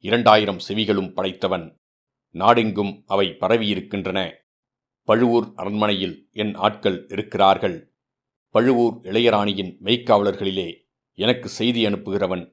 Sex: male